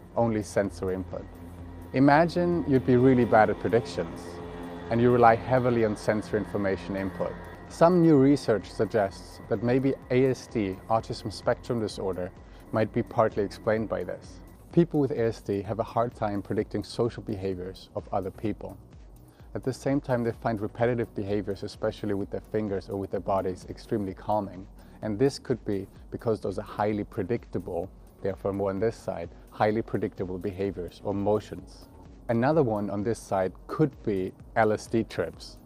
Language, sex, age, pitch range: Turkish, male, 30-49, 95-115 Hz